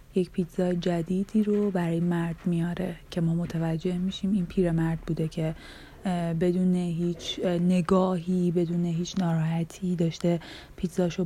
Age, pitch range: 30-49, 165-185 Hz